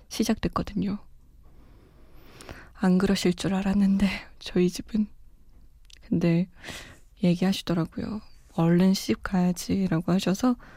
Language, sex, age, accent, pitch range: Korean, female, 20-39, native, 180-245 Hz